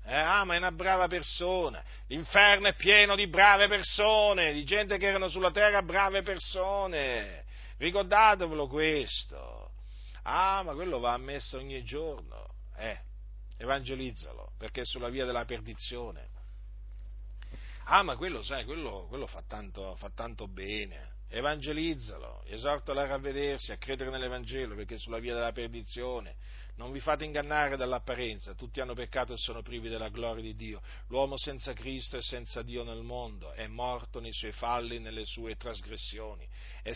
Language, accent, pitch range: Italian, native, 105-155 Hz